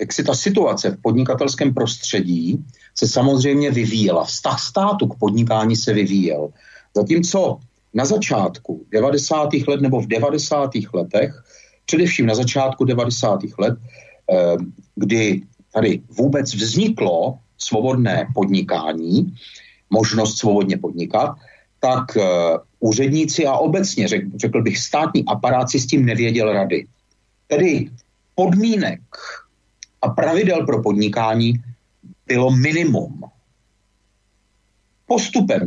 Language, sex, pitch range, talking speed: Czech, male, 105-145 Hz, 105 wpm